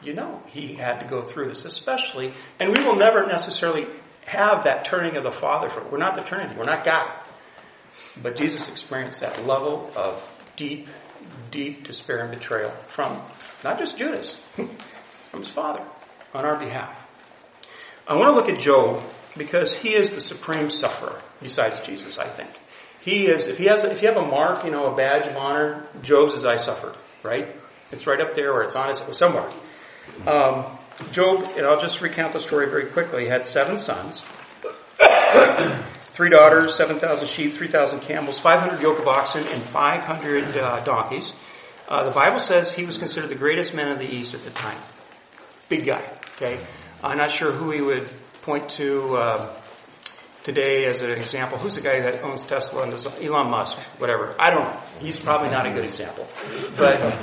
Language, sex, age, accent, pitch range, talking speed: English, male, 40-59, American, 135-165 Hz, 185 wpm